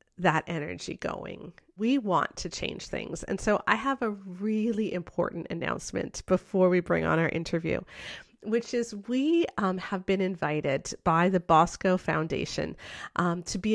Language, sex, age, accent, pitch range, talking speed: English, female, 40-59, American, 175-225 Hz, 155 wpm